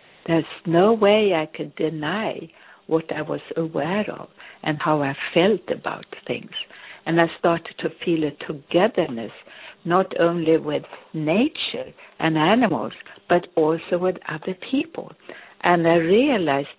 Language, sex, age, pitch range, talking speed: English, female, 60-79, 165-210 Hz, 135 wpm